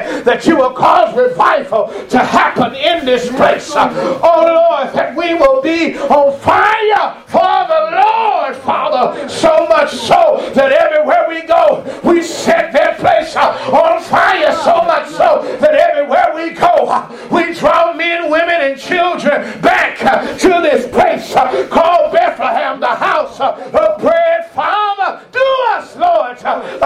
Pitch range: 285-340 Hz